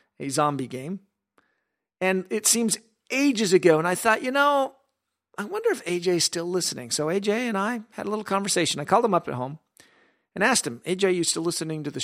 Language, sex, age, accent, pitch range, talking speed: English, male, 40-59, American, 150-215 Hz, 215 wpm